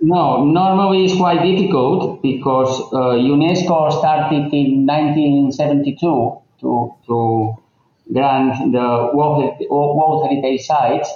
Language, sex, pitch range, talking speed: English, male, 135-165 Hz, 95 wpm